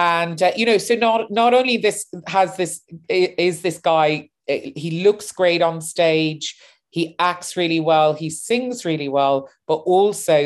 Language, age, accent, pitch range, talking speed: English, 30-49, British, 155-200 Hz, 165 wpm